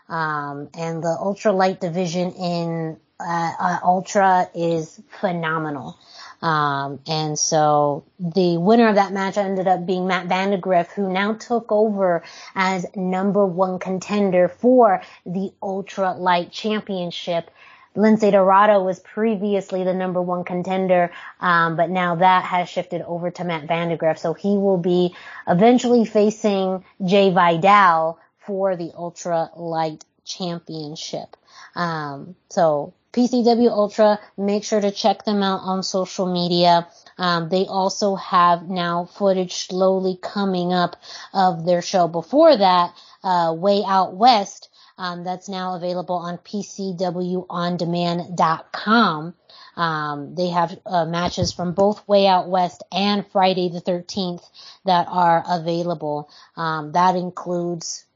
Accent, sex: American, female